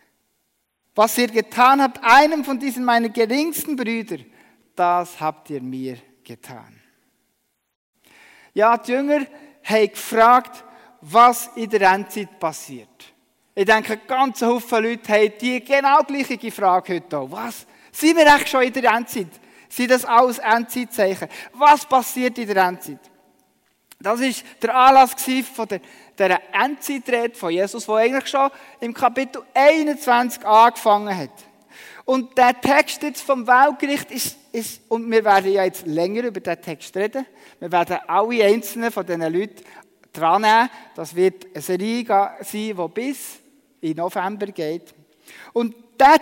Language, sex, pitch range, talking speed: German, male, 185-260 Hz, 145 wpm